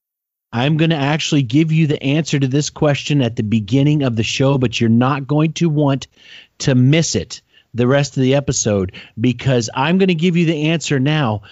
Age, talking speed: 40-59, 210 wpm